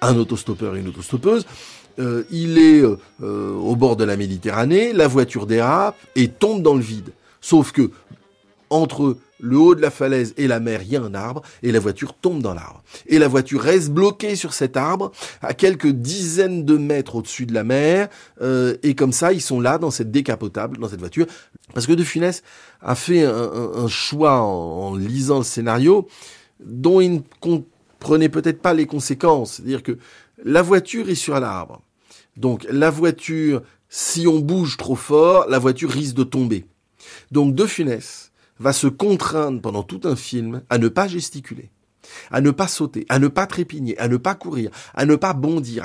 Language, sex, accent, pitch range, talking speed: French, male, French, 120-165 Hz, 190 wpm